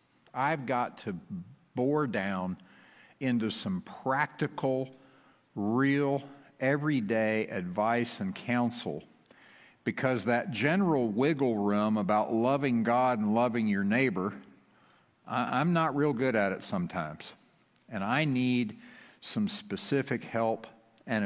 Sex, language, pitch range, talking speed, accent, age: male, English, 110-160 Hz, 110 wpm, American, 50-69